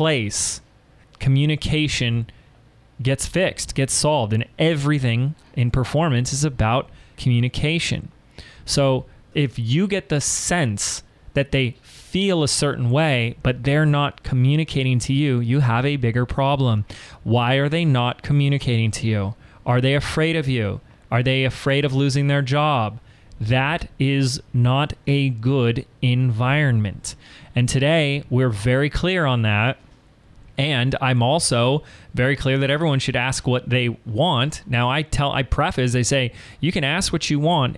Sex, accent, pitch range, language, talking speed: male, American, 120-145 Hz, English, 150 wpm